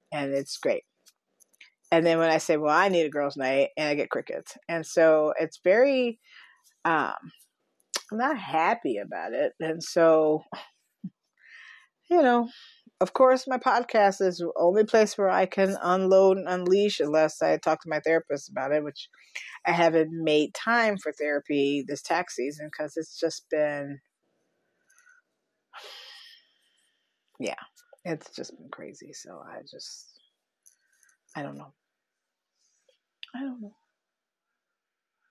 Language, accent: English, American